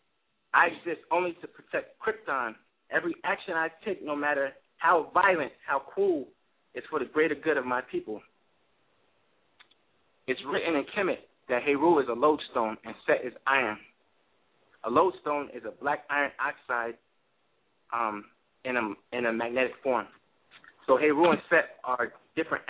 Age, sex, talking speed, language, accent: 30-49, male, 150 wpm, English, American